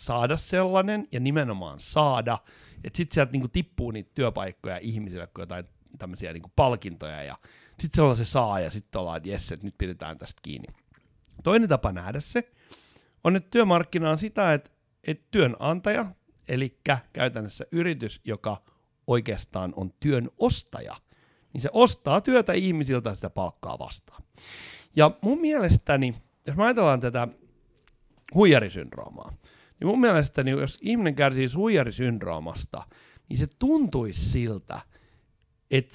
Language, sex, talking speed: Finnish, male, 135 wpm